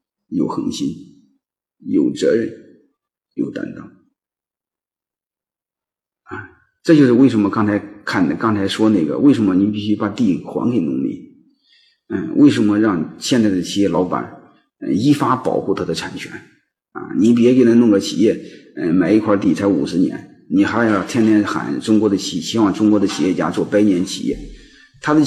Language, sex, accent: Chinese, male, native